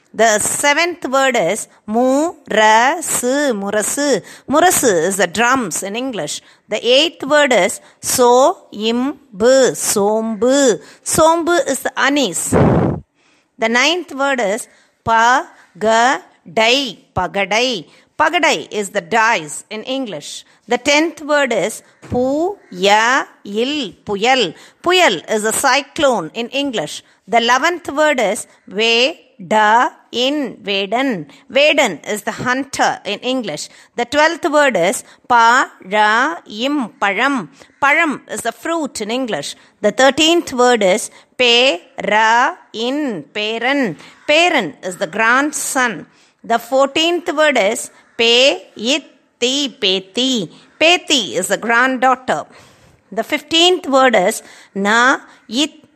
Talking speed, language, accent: 105 wpm, Tamil, native